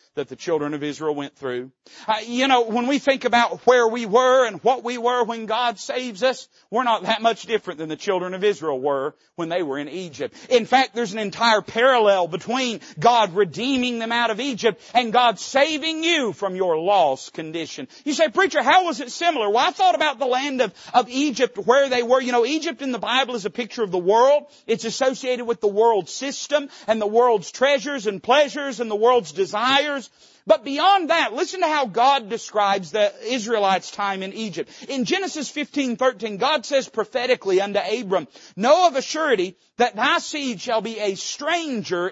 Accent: American